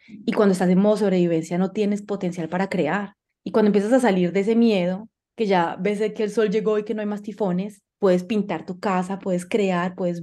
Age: 20-39